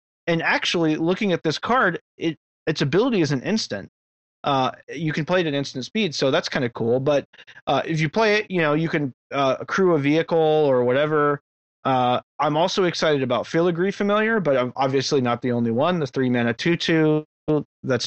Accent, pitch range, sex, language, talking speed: American, 130-170 Hz, male, English, 200 wpm